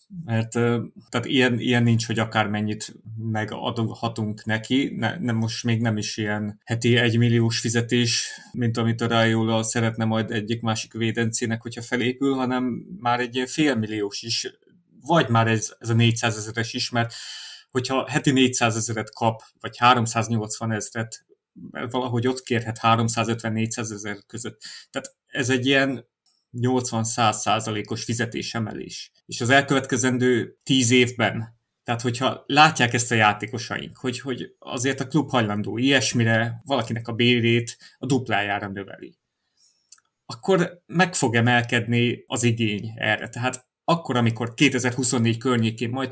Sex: male